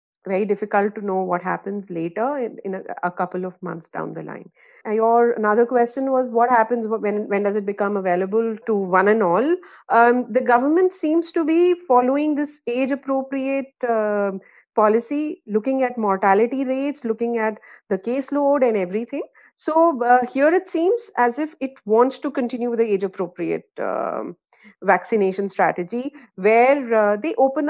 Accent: Indian